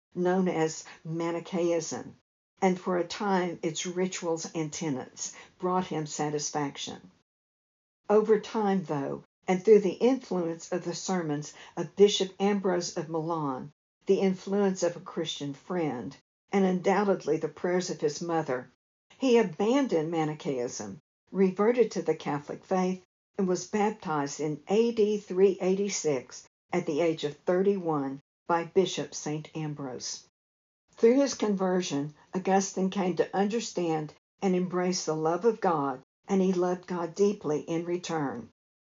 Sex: female